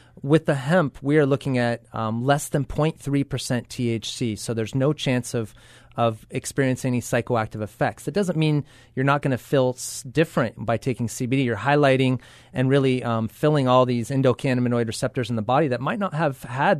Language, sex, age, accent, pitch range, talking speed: English, male, 30-49, American, 120-140 Hz, 185 wpm